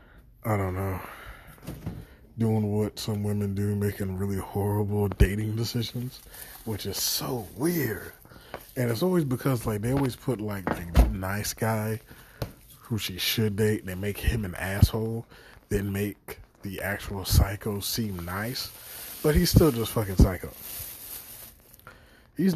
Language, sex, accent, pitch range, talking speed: English, male, American, 95-120 Hz, 140 wpm